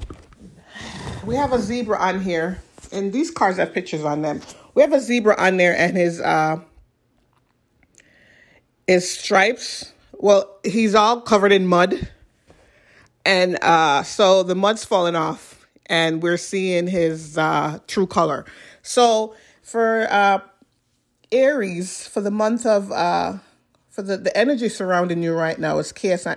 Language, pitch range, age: English, 175-220 Hz, 30-49